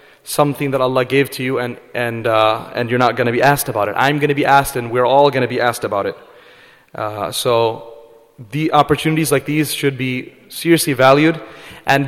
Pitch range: 130-160 Hz